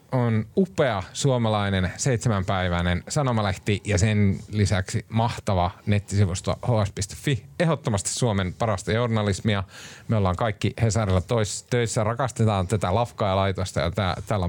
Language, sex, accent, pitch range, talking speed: Finnish, male, native, 100-130 Hz, 115 wpm